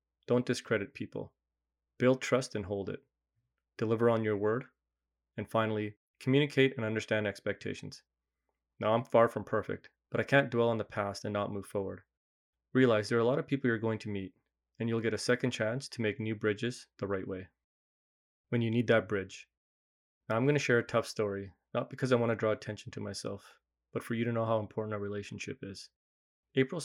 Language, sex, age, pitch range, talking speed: English, male, 20-39, 95-120 Hz, 205 wpm